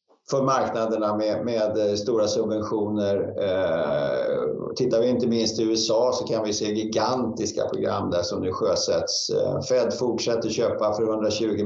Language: Swedish